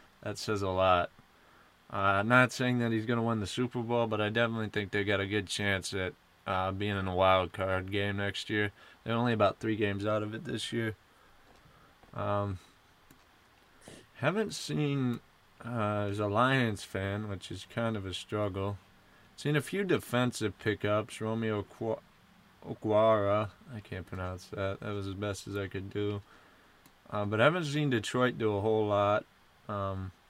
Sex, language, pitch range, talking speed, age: male, English, 100-115 Hz, 170 wpm, 20-39